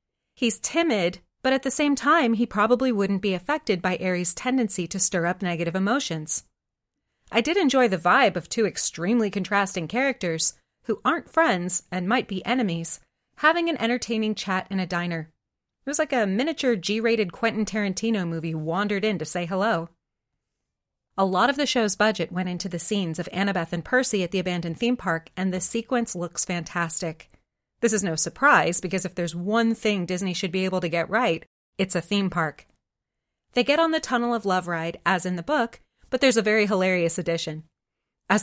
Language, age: English, 30-49